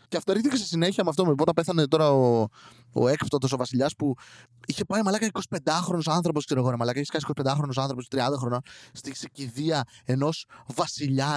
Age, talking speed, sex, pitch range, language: 20-39, 175 wpm, male, 145-225 Hz, Greek